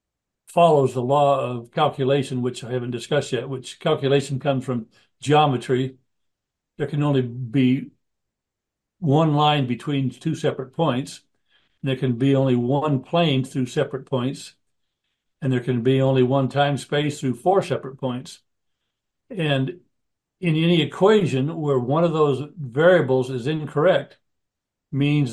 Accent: American